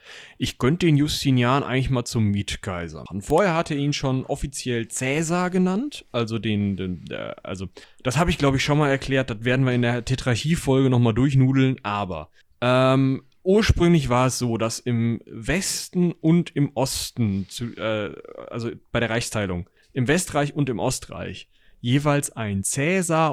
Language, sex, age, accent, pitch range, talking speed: German, male, 30-49, German, 110-145 Hz, 165 wpm